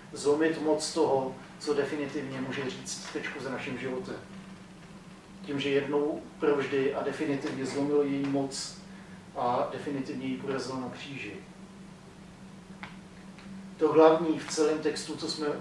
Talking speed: 125 wpm